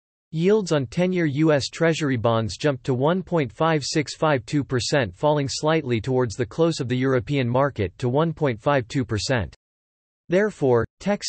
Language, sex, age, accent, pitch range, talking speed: English, male, 40-59, American, 120-160 Hz, 115 wpm